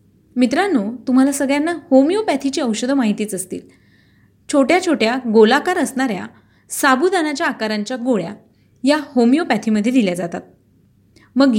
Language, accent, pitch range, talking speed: Marathi, native, 210-270 Hz, 100 wpm